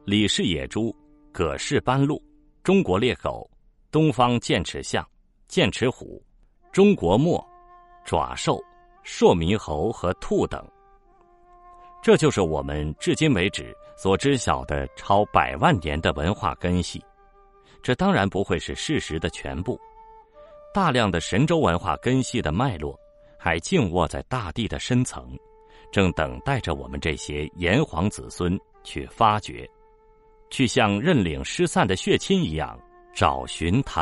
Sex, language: male, Chinese